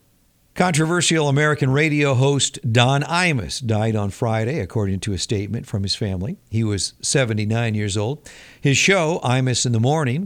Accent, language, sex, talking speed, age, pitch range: American, English, male, 160 wpm, 50-69, 110-150 Hz